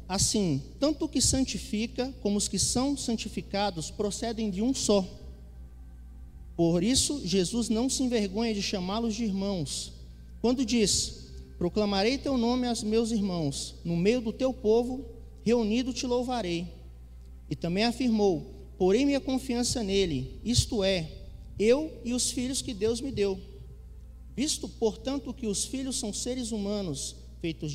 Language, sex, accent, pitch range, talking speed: Portuguese, male, Brazilian, 165-245 Hz, 145 wpm